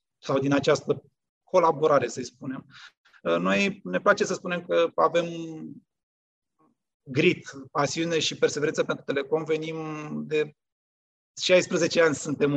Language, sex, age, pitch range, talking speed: Romanian, male, 30-49, 145-175 Hz, 115 wpm